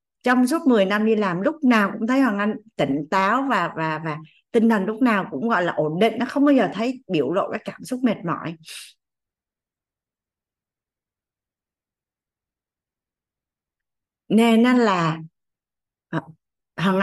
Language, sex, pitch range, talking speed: Vietnamese, female, 185-245 Hz, 145 wpm